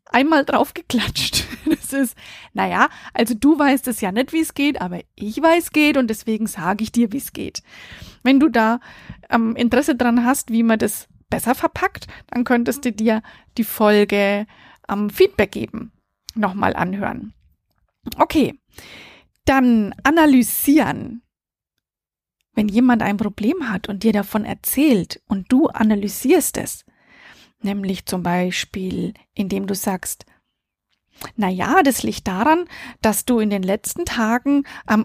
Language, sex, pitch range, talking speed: German, female, 210-280 Hz, 145 wpm